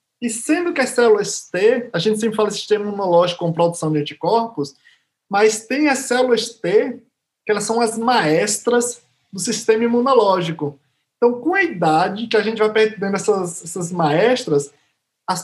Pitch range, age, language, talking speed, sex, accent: 170-230 Hz, 20-39, Portuguese, 165 wpm, male, Brazilian